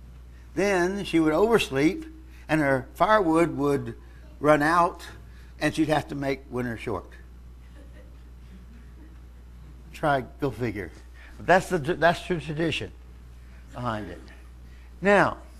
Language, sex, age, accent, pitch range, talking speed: English, male, 60-79, American, 100-160 Hz, 110 wpm